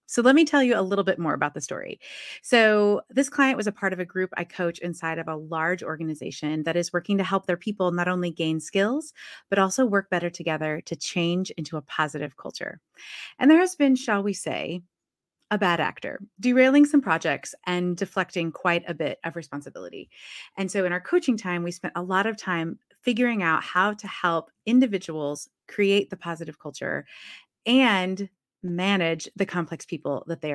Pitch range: 165-220 Hz